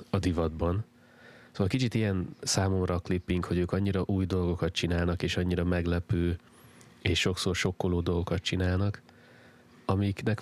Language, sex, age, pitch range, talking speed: Hungarian, male, 30-49, 85-100 Hz, 125 wpm